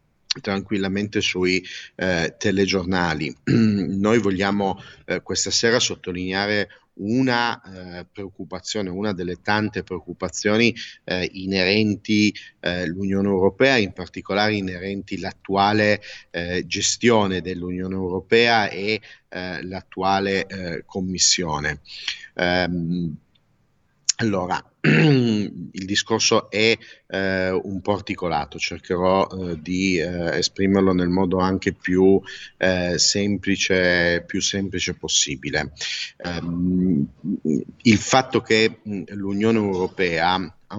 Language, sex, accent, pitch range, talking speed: Italian, male, native, 90-105 Hz, 95 wpm